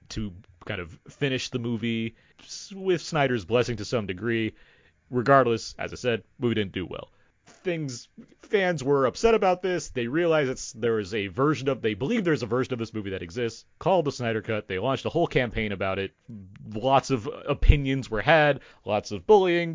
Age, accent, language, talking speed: 30-49, American, English, 190 wpm